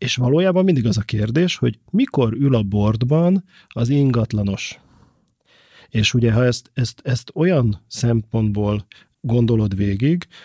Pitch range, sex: 105-125 Hz, male